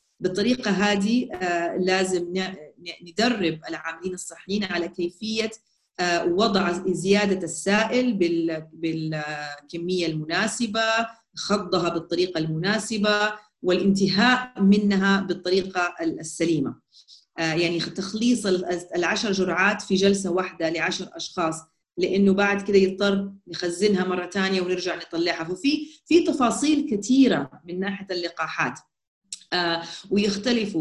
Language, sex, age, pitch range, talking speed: Arabic, female, 30-49, 175-205 Hz, 90 wpm